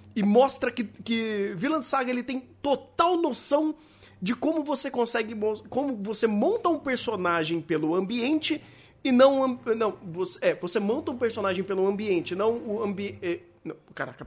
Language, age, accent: Portuguese, 30-49, Brazilian